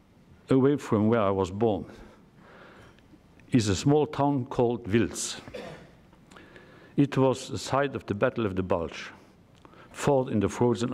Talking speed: 145 wpm